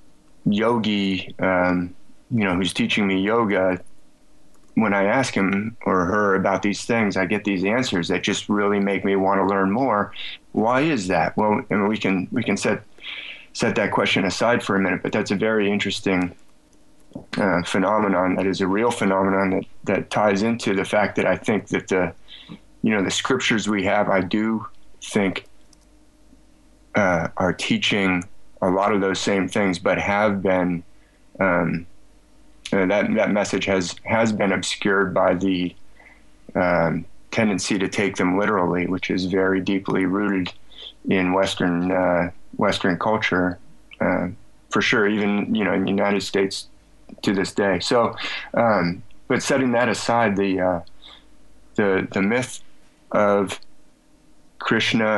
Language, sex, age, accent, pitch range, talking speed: English, male, 20-39, American, 95-100 Hz, 155 wpm